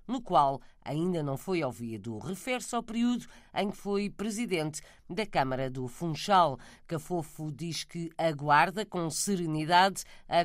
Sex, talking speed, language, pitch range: female, 140 wpm, Portuguese, 145-205 Hz